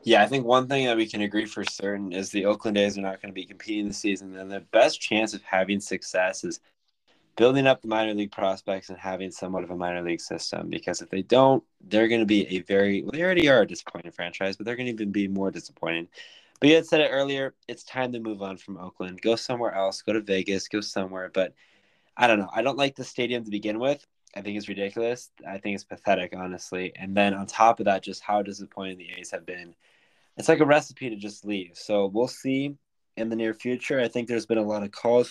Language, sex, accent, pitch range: English, male, American, 95-115 Hz